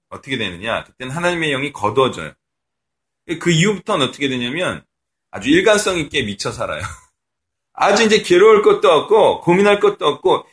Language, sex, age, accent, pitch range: Korean, male, 30-49, native, 120-190 Hz